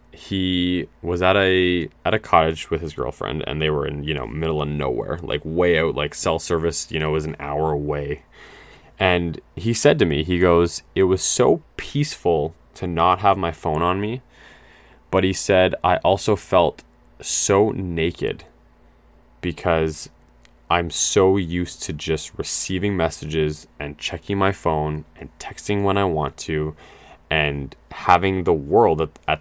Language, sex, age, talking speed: English, male, 20-39, 165 wpm